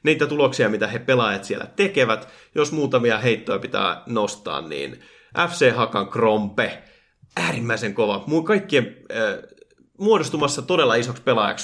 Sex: male